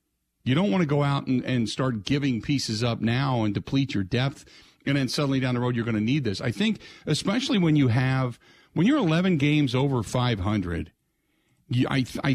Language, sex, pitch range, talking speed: English, male, 115-155 Hz, 210 wpm